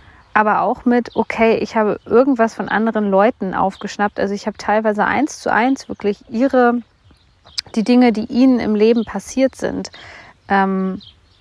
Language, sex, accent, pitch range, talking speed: German, female, German, 190-225 Hz, 155 wpm